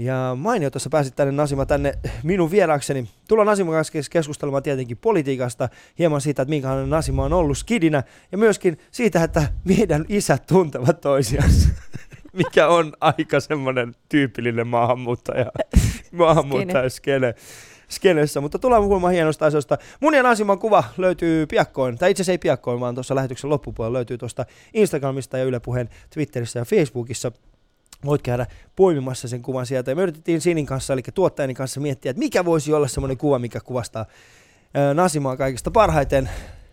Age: 20-39